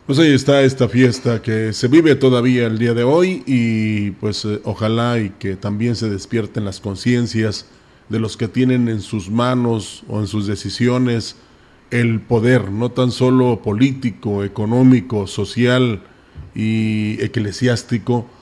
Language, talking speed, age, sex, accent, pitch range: Spanish, 145 wpm, 40-59, male, Mexican, 110-130 Hz